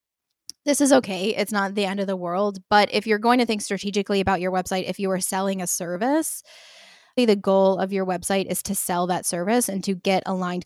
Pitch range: 185-220 Hz